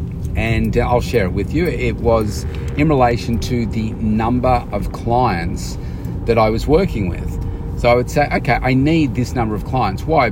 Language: English